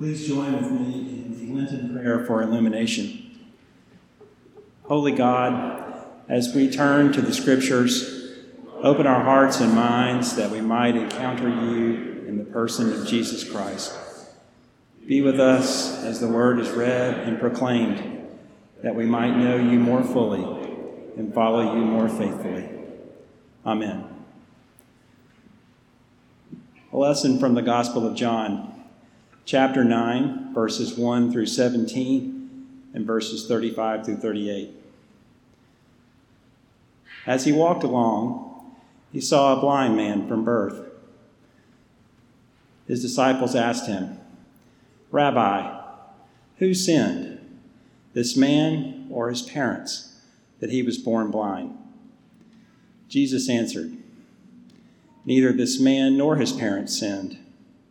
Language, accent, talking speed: English, American, 115 wpm